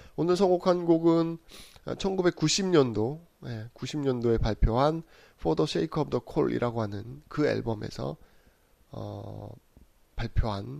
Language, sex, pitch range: Korean, male, 110-145 Hz